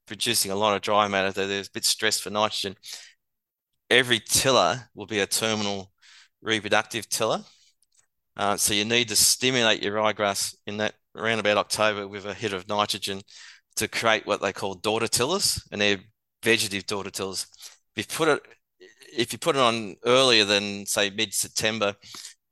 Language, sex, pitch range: English, male, 100-110 Hz